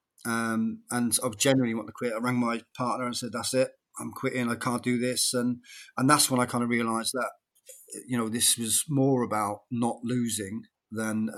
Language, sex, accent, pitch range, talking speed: English, male, British, 110-125 Hz, 205 wpm